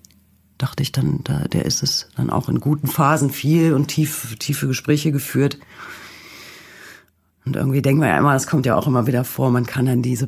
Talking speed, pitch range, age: 205 wpm, 105-155 Hz, 40-59